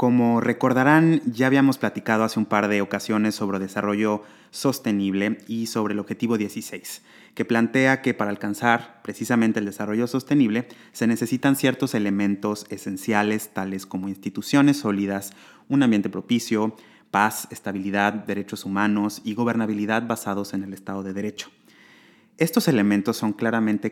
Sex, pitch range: male, 100-120 Hz